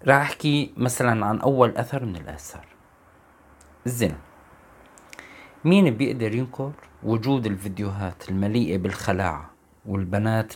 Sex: male